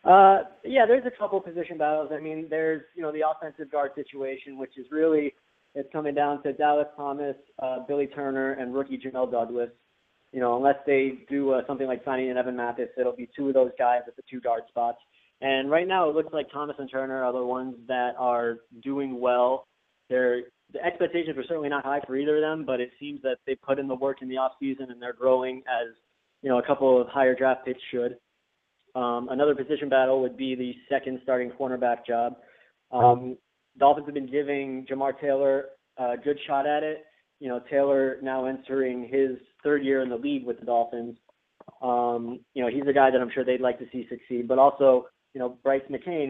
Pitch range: 125-145 Hz